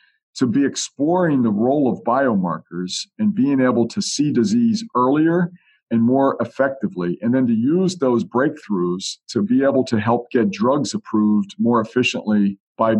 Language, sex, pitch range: English, male, 110-155 Hz